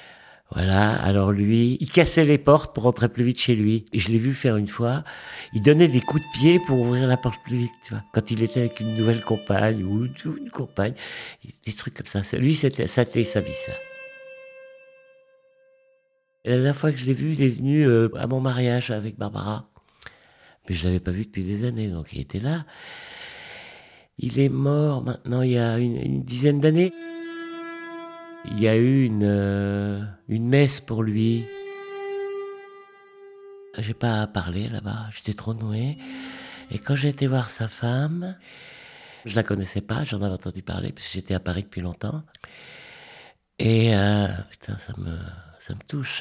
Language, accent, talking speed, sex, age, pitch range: French, French, 190 wpm, male, 50-69, 110-155 Hz